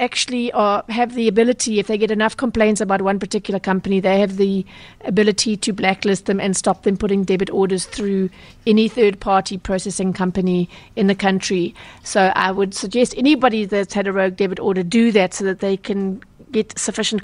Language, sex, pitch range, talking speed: English, female, 185-215 Hz, 190 wpm